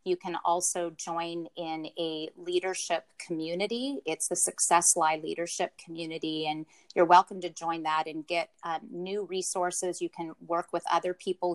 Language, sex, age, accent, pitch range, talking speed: English, female, 30-49, American, 165-185 Hz, 160 wpm